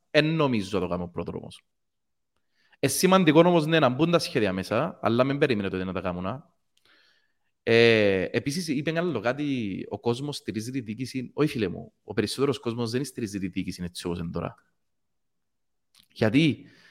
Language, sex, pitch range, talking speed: Greek, male, 100-145 Hz, 160 wpm